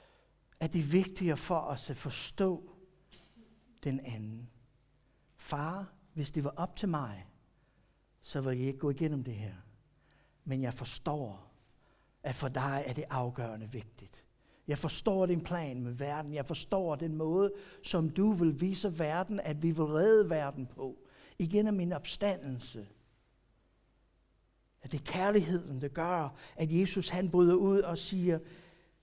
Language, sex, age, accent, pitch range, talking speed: Danish, male, 60-79, native, 130-180 Hz, 150 wpm